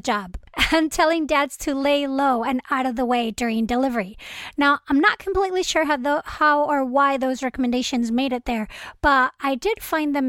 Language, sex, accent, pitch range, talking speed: English, female, American, 245-310 Hz, 200 wpm